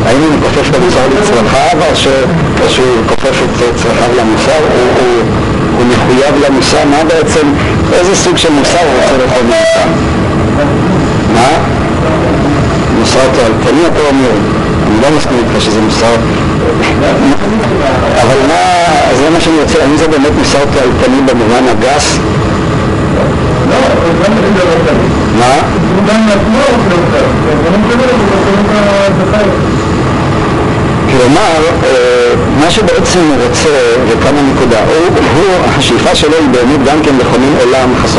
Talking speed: 65 wpm